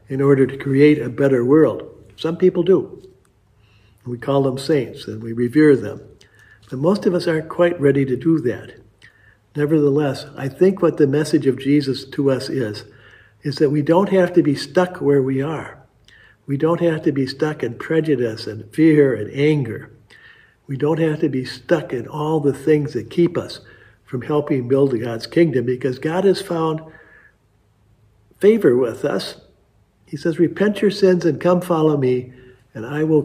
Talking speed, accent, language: 180 wpm, American, English